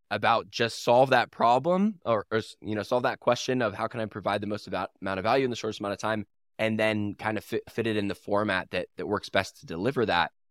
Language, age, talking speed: English, 10-29, 265 wpm